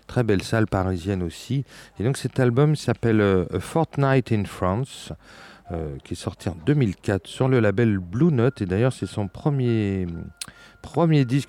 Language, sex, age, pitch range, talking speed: French, male, 40-59, 95-125 Hz, 165 wpm